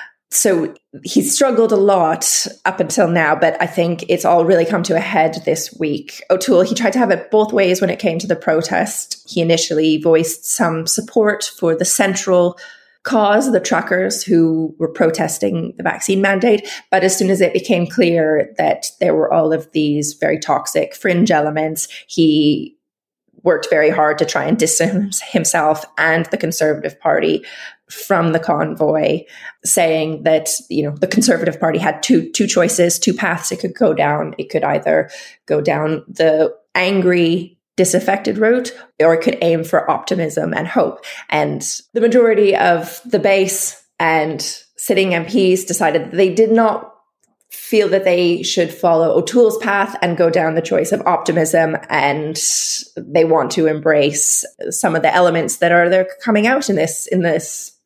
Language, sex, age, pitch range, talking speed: English, female, 20-39, 160-210 Hz, 170 wpm